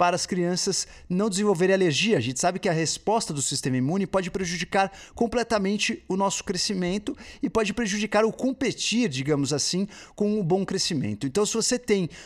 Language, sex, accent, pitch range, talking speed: Portuguese, male, Brazilian, 145-190 Hz, 175 wpm